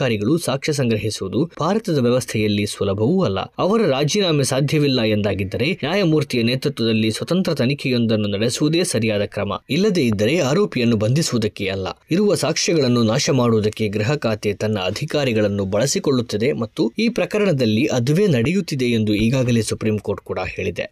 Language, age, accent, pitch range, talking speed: Kannada, 20-39, native, 105-150 Hz, 120 wpm